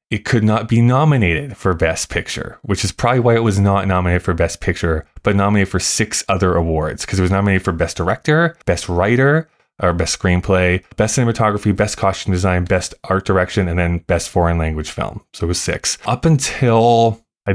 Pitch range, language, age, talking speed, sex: 90-115 Hz, English, 20-39, 200 wpm, male